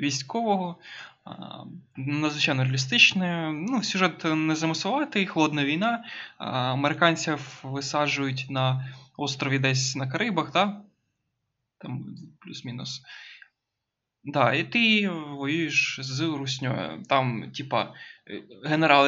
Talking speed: 90 wpm